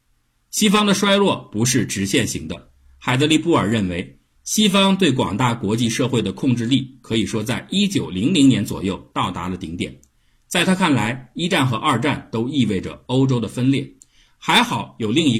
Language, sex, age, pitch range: Chinese, male, 50-69, 90-140 Hz